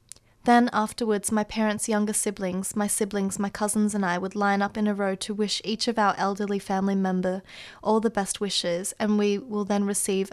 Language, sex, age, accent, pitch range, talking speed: English, female, 20-39, Australian, 195-220 Hz, 205 wpm